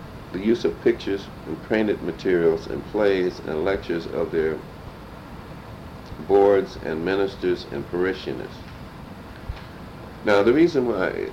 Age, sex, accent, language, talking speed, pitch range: 60-79, male, American, English, 115 wpm, 85-115 Hz